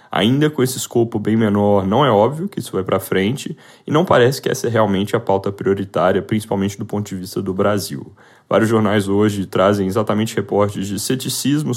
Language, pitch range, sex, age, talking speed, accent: Portuguese, 95-115 Hz, male, 10-29, 200 wpm, Brazilian